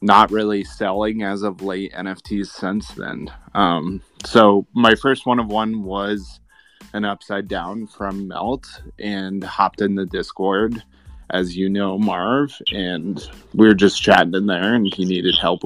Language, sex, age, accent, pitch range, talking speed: English, male, 20-39, American, 95-110 Hz, 160 wpm